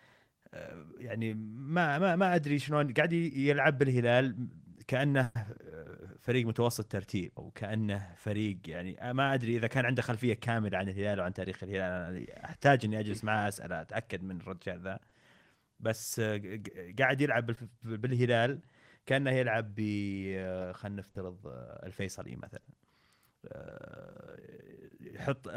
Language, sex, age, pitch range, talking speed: Arabic, male, 30-49, 100-130 Hz, 115 wpm